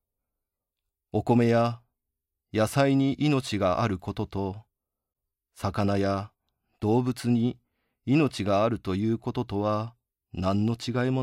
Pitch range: 85-115 Hz